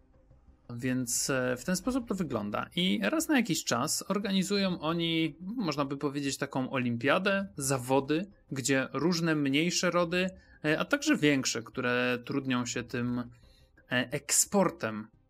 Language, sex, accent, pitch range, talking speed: Polish, male, native, 120-160 Hz, 120 wpm